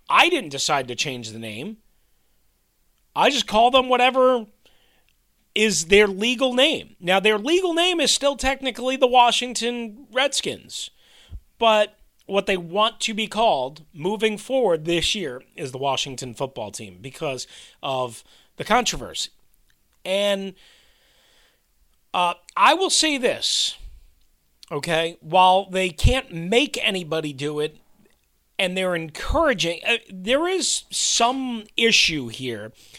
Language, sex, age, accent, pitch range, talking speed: English, male, 30-49, American, 165-255 Hz, 125 wpm